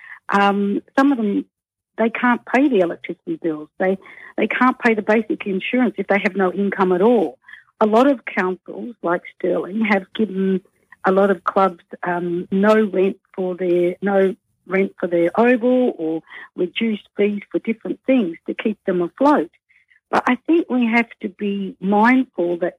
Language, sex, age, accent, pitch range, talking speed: English, female, 60-79, Australian, 190-235 Hz, 170 wpm